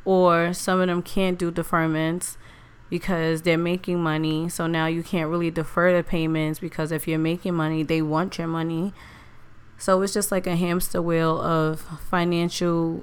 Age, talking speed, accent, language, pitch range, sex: 20-39, 170 wpm, American, English, 160-175 Hz, female